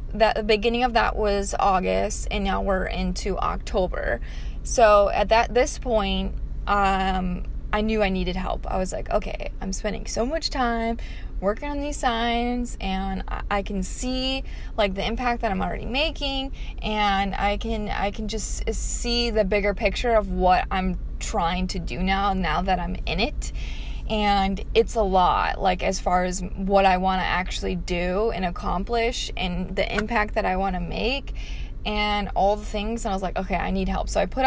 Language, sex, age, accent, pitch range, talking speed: English, female, 20-39, American, 190-225 Hz, 190 wpm